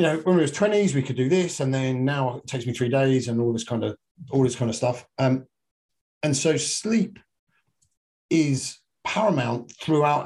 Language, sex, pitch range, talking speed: English, male, 120-145 Hz, 205 wpm